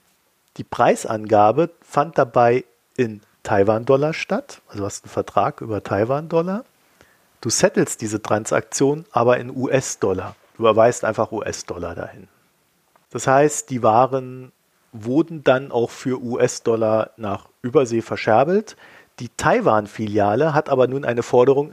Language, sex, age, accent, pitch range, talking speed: German, male, 40-59, German, 110-145 Hz, 125 wpm